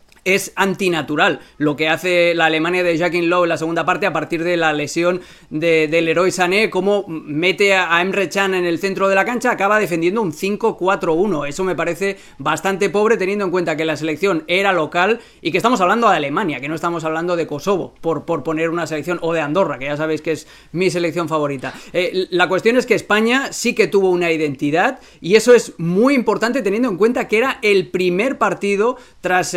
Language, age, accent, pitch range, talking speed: Spanish, 30-49, Spanish, 165-205 Hz, 210 wpm